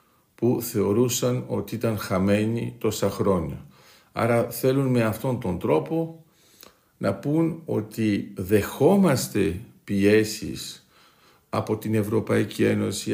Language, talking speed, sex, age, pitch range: Greek, 100 wpm, male, 50-69, 100-135 Hz